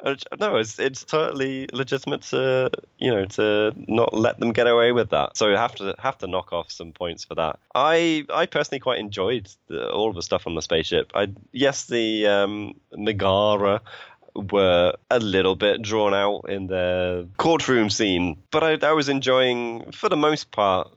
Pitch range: 90-125 Hz